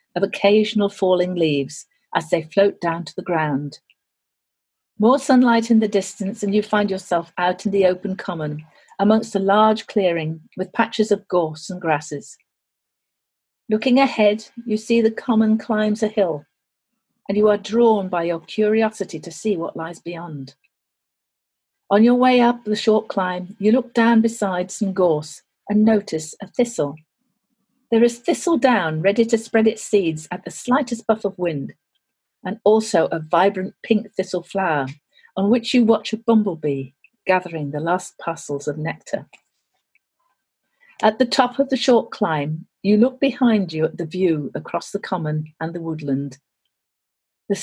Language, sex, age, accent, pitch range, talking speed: English, female, 50-69, British, 165-220 Hz, 160 wpm